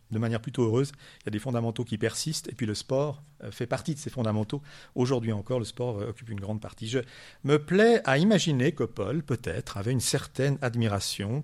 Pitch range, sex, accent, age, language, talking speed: 115-175 Hz, male, French, 50-69, French, 210 wpm